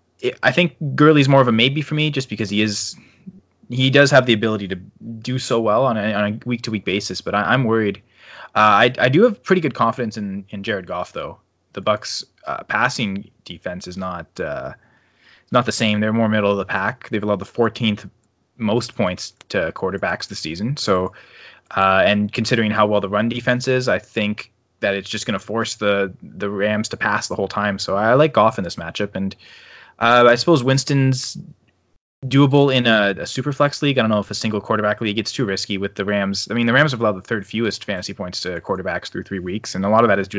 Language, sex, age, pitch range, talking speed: English, male, 20-39, 100-125 Hz, 225 wpm